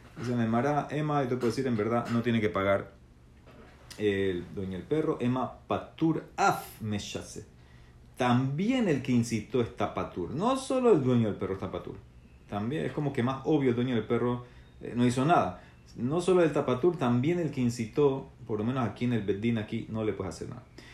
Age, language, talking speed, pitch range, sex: 40-59, Spanish, 205 wpm, 105-130 Hz, male